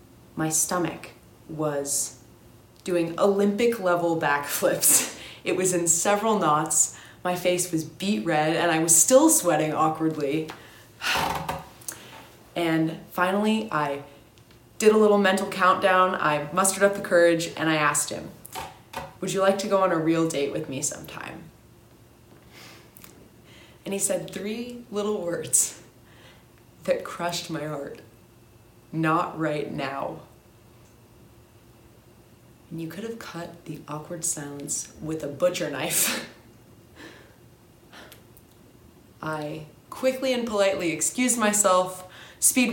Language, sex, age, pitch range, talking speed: English, female, 20-39, 145-185 Hz, 120 wpm